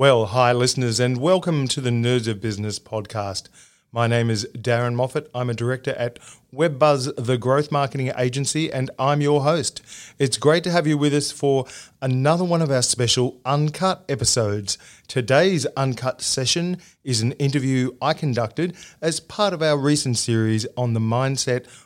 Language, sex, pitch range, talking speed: English, male, 120-155 Hz, 165 wpm